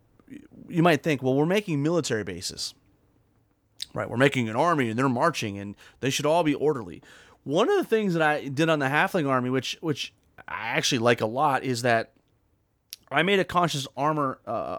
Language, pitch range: English, 120-160 Hz